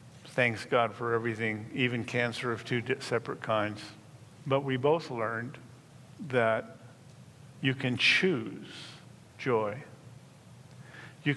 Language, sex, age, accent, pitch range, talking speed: English, male, 50-69, American, 120-140 Hz, 105 wpm